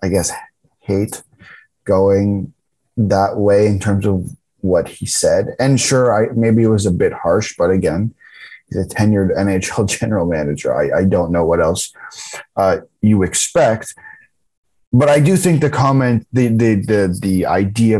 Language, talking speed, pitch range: English, 165 wpm, 95-120 Hz